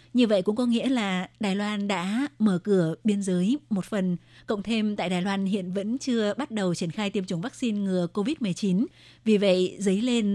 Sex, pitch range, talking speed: female, 185-225 Hz, 210 wpm